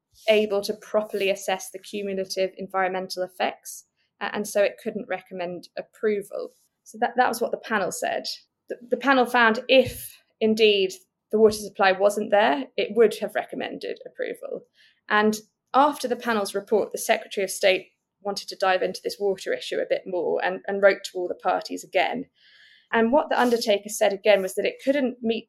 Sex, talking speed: female, 180 wpm